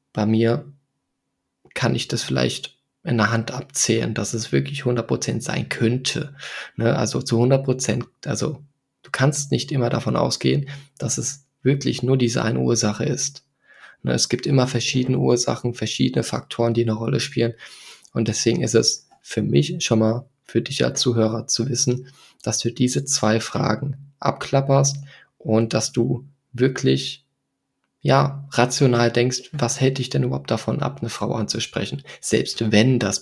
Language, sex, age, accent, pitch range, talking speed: German, male, 20-39, German, 115-140 Hz, 155 wpm